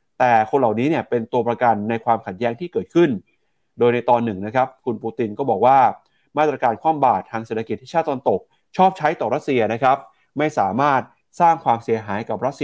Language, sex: Thai, male